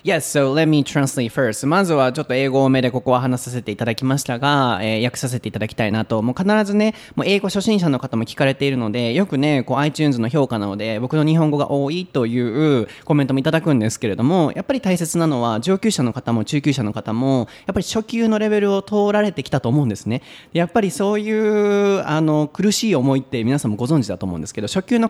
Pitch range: 120-165 Hz